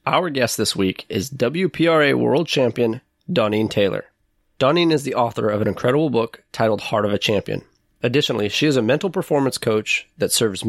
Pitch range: 110-140 Hz